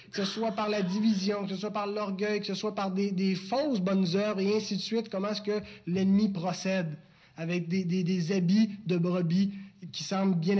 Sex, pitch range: male, 170-205 Hz